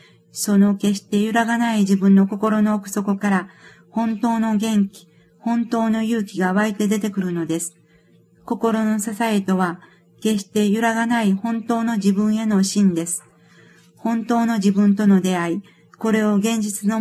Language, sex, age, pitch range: Japanese, female, 50-69, 190-215 Hz